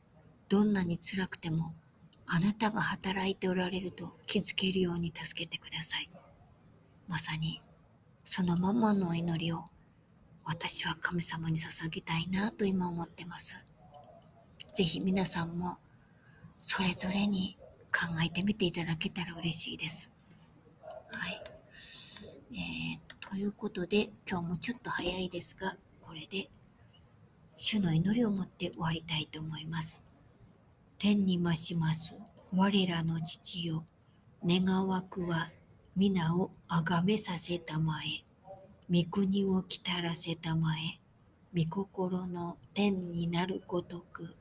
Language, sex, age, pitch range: Japanese, male, 50-69, 165-190 Hz